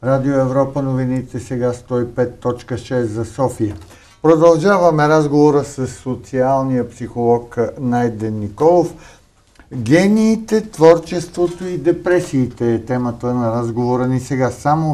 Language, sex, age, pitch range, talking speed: Bulgarian, male, 50-69, 110-135 Hz, 100 wpm